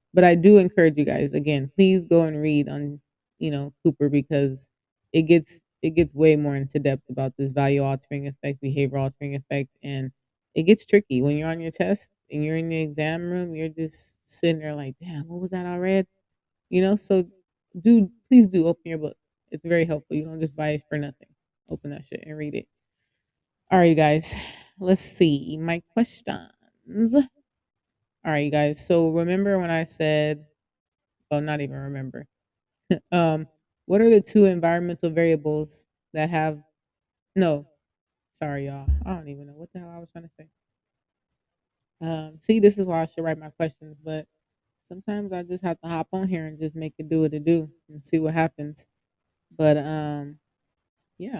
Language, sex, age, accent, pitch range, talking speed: English, female, 20-39, American, 145-170 Hz, 190 wpm